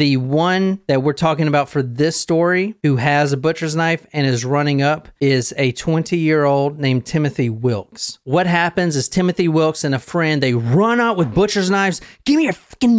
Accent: American